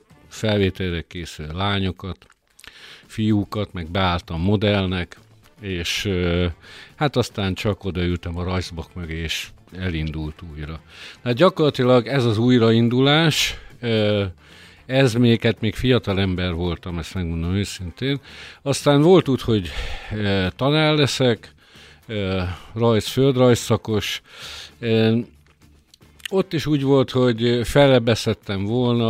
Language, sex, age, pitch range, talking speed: Hungarian, male, 50-69, 95-125 Hz, 95 wpm